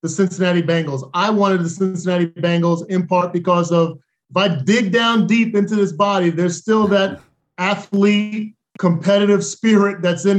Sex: male